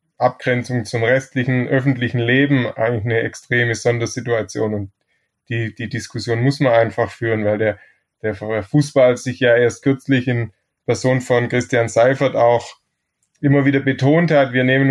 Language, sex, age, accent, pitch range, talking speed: German, male, 20-39, German, 115-135 Hz, 150 wpm